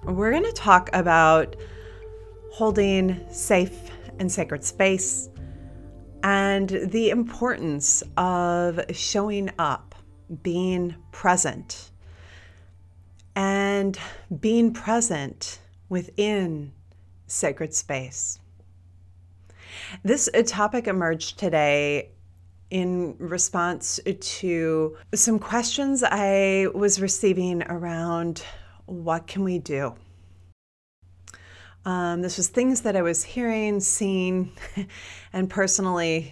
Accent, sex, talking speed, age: American, female, 85 wpm, 30-49